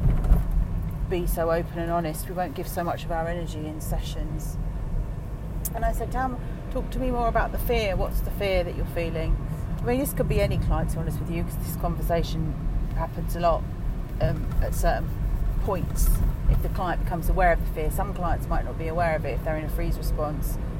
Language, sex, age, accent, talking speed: English, female, 40-59, British, 220 wpm